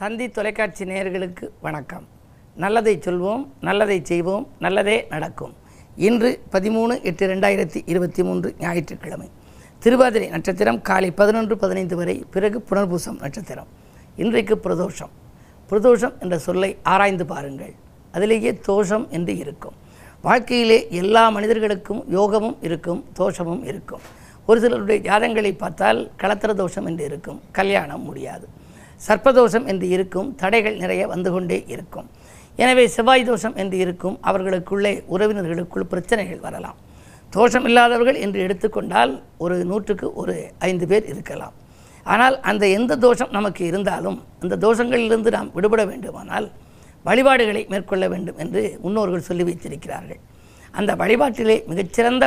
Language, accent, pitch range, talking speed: Tamil, native, 185-225 Hz, 115 wpm